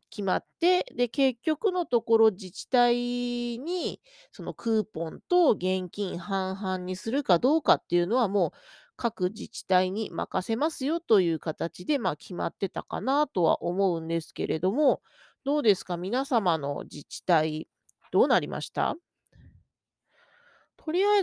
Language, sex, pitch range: Japanese, female, 185-275 Hz